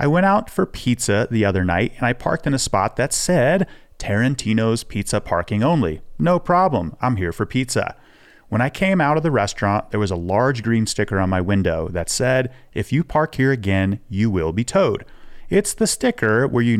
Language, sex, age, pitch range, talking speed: English, male, 30-49, 105-140 Hz, 205 wpm